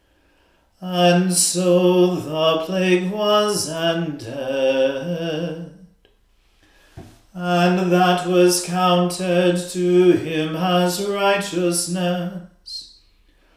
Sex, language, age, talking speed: male, English, 40-59, 60 wpm